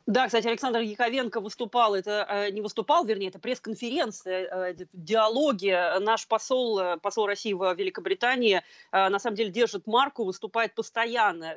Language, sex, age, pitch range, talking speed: Russian, female, 30-49, 190-235 Hz, 130 wpm